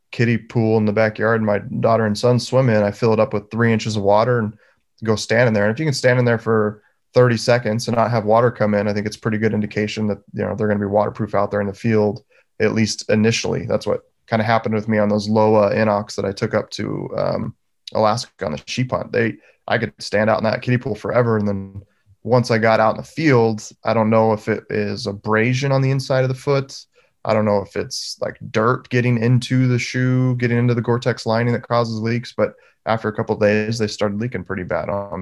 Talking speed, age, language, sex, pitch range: 255 wpm, 20-39, English, male, 105-120 Hz